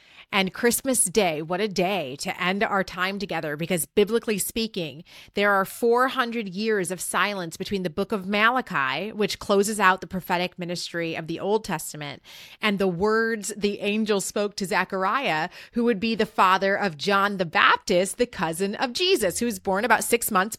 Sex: female